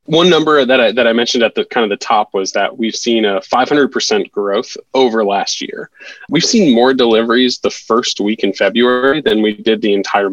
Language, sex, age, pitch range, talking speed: English, male, 20-39, 105-130 Hz, 210 wpm